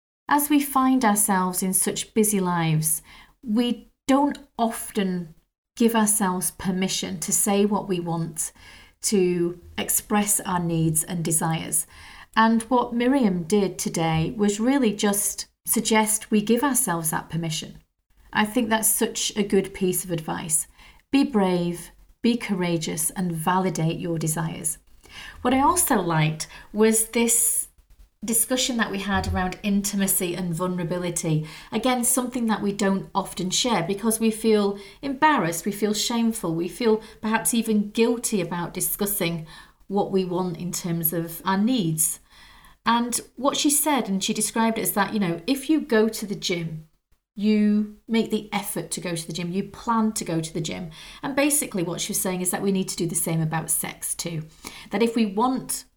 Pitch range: 175-225 Hz